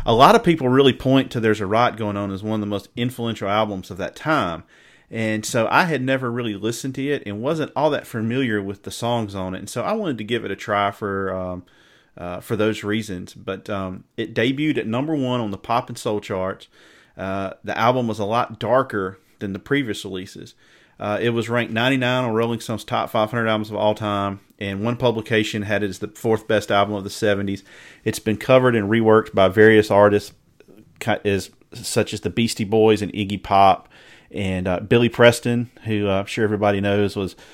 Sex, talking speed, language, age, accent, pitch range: male, 220 wpm, English, 40-59, American, 100-115 Hz